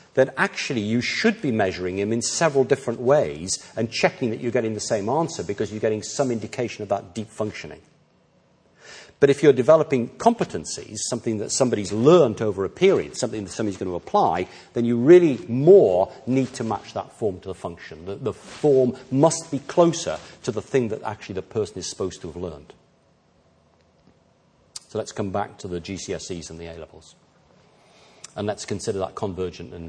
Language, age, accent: English, 50-69, British